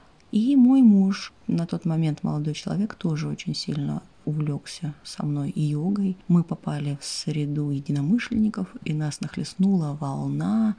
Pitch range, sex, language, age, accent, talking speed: 150-200 Hz, female, Russian, 30-49, native, 135 wpm